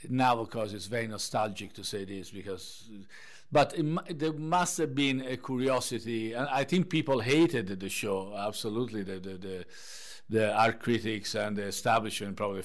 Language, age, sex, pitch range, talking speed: English, 50-69, male, 105-130 Hz, 165 wpm